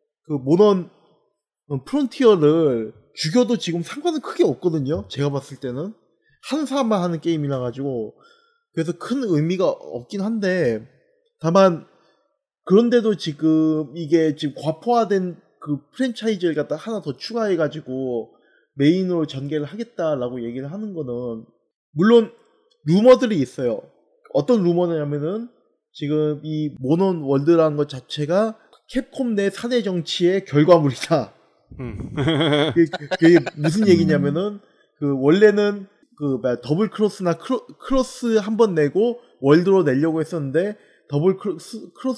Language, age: Korean, 20-39